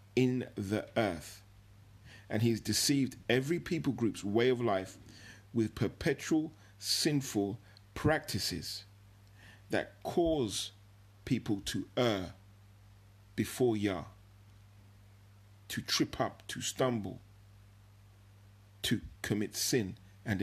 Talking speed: 95 wpm